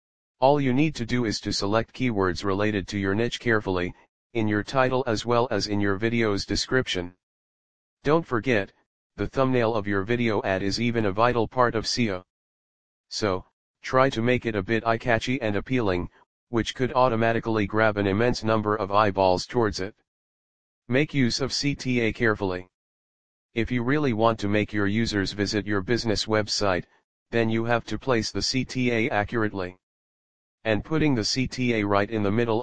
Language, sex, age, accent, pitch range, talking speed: English, male, 40-59, American, 100-120 Hz, 170 wpm